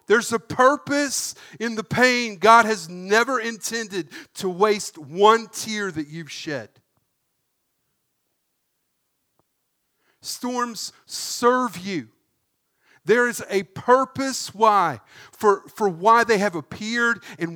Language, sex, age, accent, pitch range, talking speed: English, male, 50-69, American, 170-230 Hz, 110 wpm